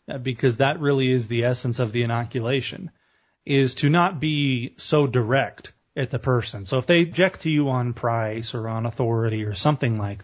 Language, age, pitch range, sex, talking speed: English, 30-49, 120-150 Hz, male, 190 wpm